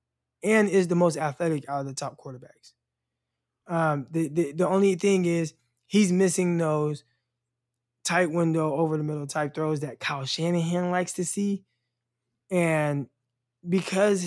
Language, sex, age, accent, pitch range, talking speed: English, male, 20-39, American, 145-175 Hz, 145 wpm